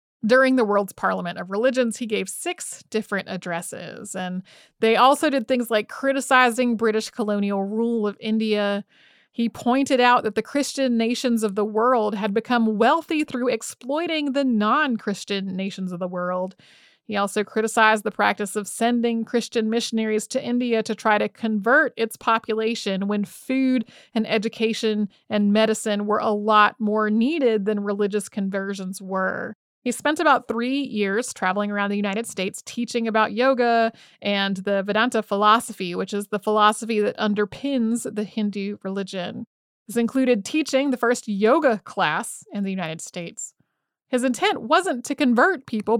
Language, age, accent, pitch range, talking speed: English, 30-49, American, 200-245 Hz, 155 wpm